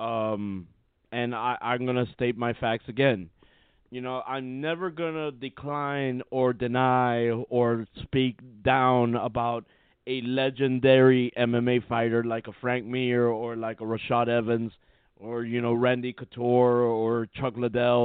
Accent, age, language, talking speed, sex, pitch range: American, 30-49, English, 145 wpm, male, 120-160 Hz